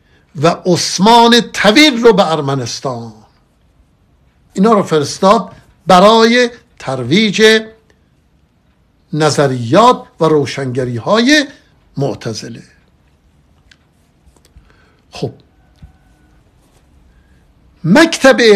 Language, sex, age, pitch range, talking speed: Persian, male, 60-79, 135-205 Hz, 60 wpm